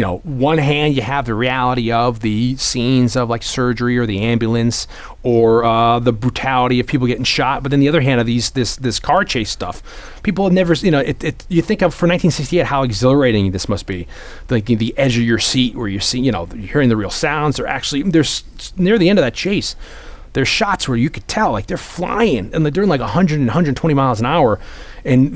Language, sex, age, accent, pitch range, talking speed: English, male, 30-49, American, 115-145 Hz, 235 wpm